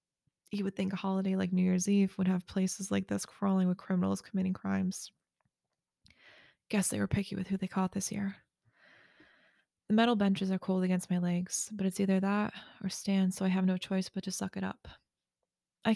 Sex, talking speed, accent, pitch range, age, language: female, 205 wpm, American, 185-195 Hz, 20-39, English